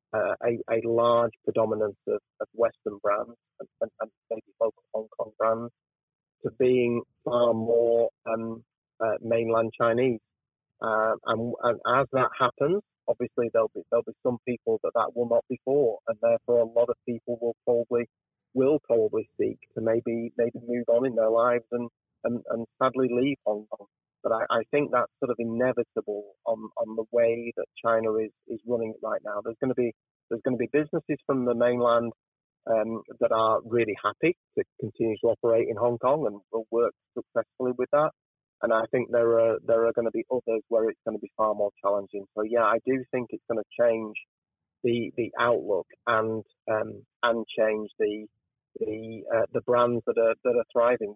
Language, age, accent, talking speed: English, 30-49, British, 190 wpm